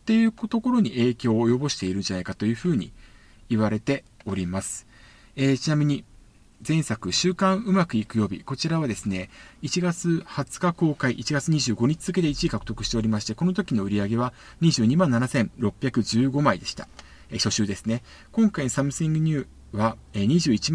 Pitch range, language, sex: 110-170 Hz, Japanese, male